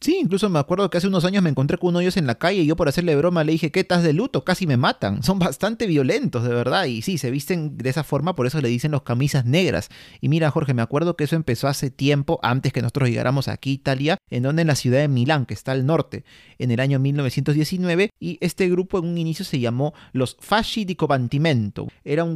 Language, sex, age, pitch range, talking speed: Spanish, male, 30-49, 125-165 Hz, 255 wpm